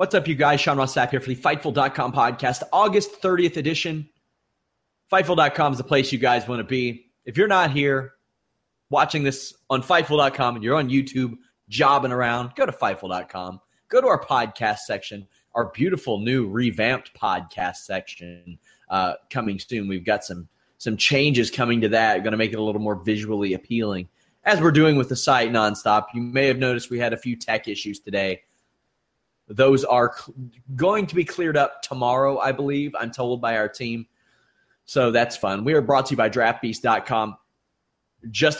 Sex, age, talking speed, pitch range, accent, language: male, 30-49, 180 wpm, 110-145 Hz, American, English